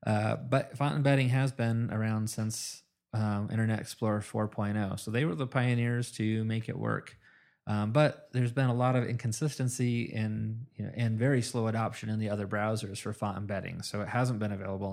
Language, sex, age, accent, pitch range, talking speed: English, male, 30-49, American, 105-125 Hz, 195 wpm